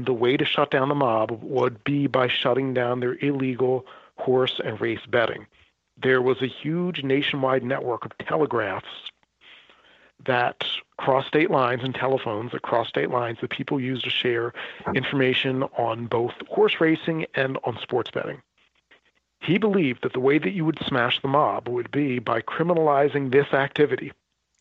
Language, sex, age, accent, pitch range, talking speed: English, male, 40-59, American, 125-145 Hz, 160 wpm